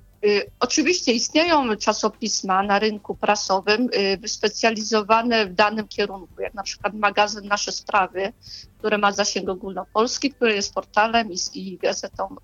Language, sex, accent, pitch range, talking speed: Polish, female, native, 205-245 Hz, 120 wpm